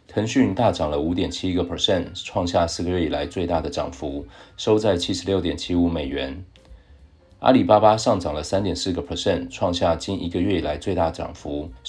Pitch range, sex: 80-95 Hz, male